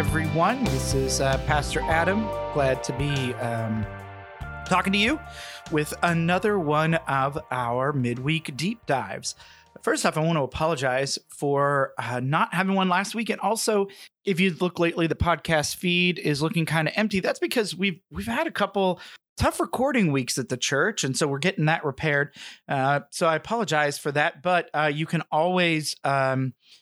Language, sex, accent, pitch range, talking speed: English, male, American, 125-170 Hz, 175 wpm